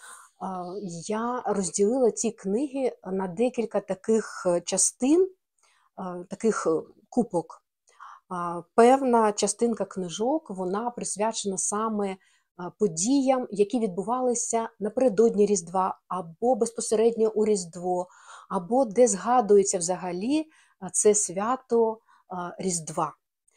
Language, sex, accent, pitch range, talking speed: Ukrainian, female, native, 185-245 Hz, 80 wpm